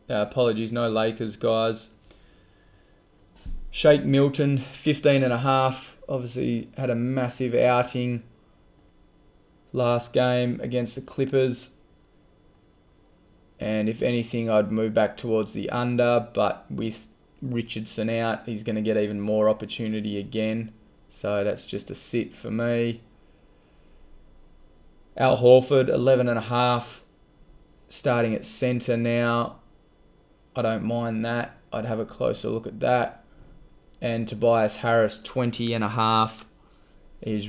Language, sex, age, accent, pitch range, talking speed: English, male, 20-39, Australian, 110-125 Hz, 115 wpm